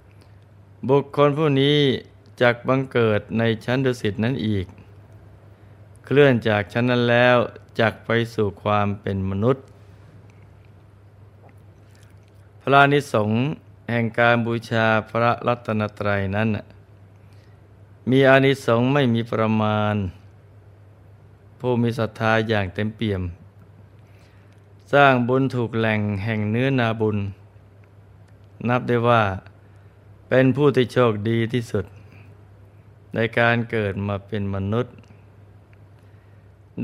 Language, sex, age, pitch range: Thai, male, 20-39, 100-120 Hz